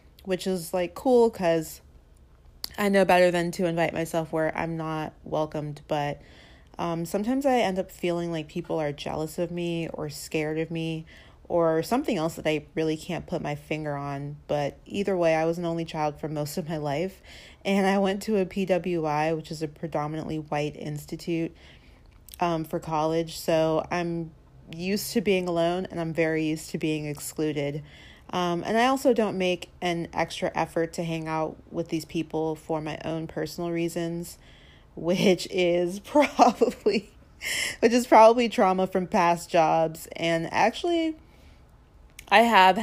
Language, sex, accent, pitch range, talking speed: English, female, American, 155-175 Hz, 165 wpm